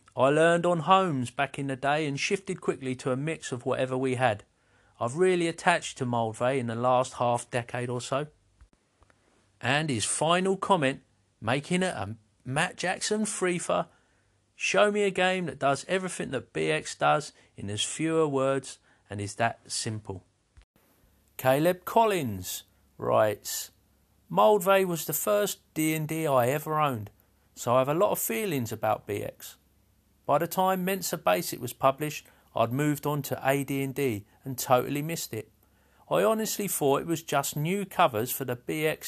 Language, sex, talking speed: English, male, 160 wpm